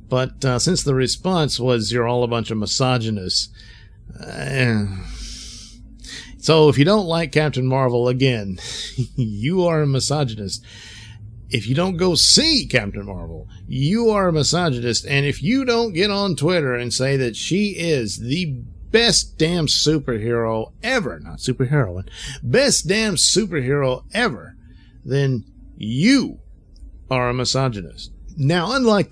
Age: 50-69